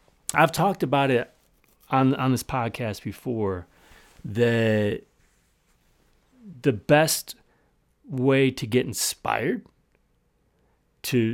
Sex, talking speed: male, 90 wpm